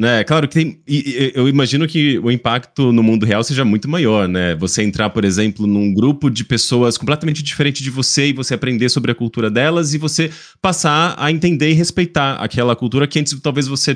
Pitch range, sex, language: 110-145 Hz, male, Portuguese